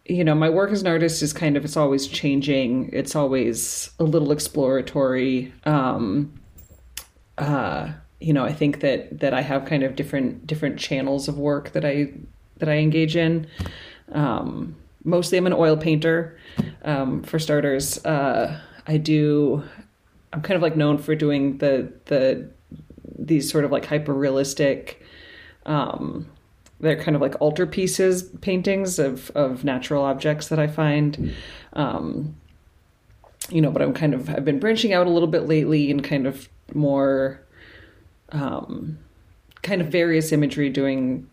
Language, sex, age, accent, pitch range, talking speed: English, female, 30-49, American, 130-155 Hz, 155 wpm